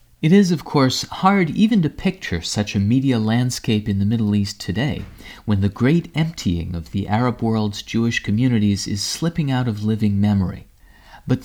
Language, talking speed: English, 180 wpm